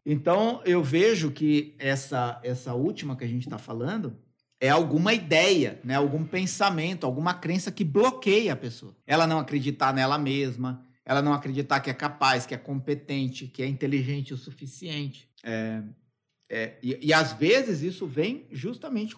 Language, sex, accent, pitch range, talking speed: Portuguese, male, Brazilian, 130-195 Hz, 165 wpm